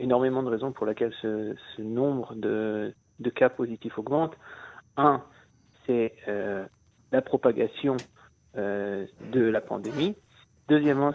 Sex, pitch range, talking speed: male, 115-150 Hz, 125 wpm